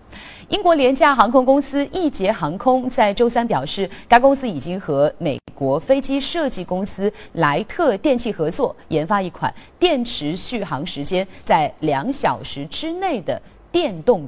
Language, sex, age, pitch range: Chinese, female, 30-49, 160-255 Hz